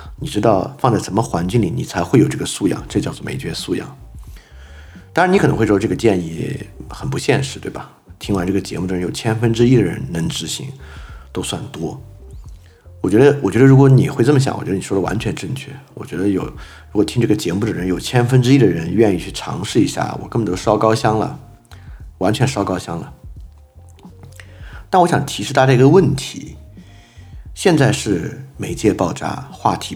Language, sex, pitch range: Chinese, male, 90-120 Hz